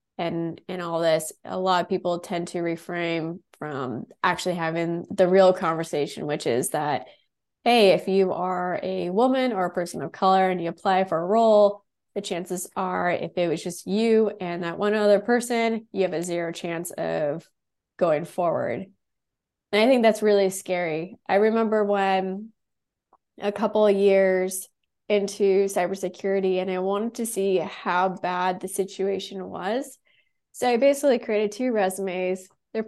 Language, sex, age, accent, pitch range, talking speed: English, female, 20-39, American, 180-210 Hz, 165 wpm